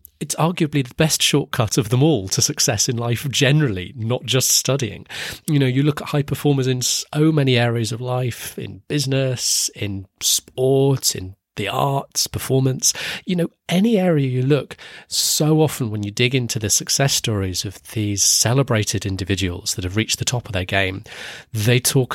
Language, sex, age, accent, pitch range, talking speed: English, male, 30-49, British, 100-135 Hz, 180 wpm